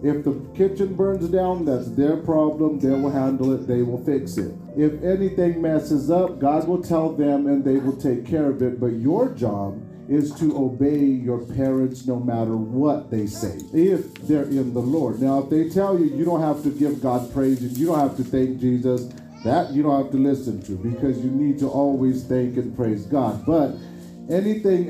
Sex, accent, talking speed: male, American, 205 wpm